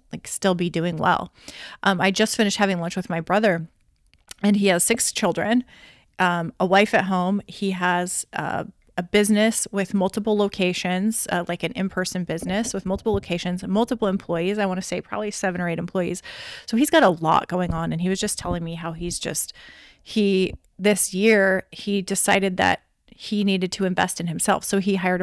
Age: 30-49